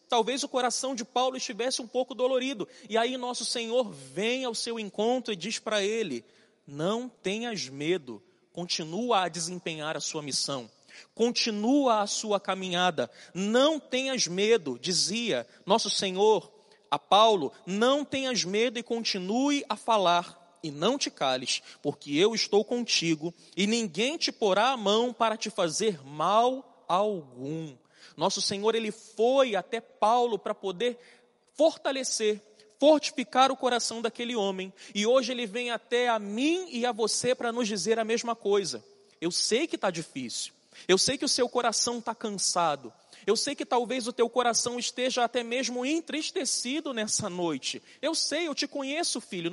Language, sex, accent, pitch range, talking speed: Portuguese, male, Brazilian, 195-250 Hz, 155 wpm